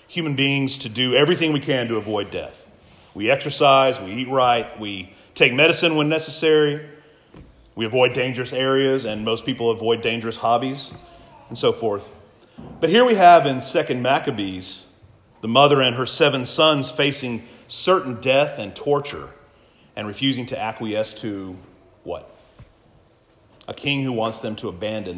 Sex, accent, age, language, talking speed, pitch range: male, American, 40-59, English, 155 wpm, 115-145 Hz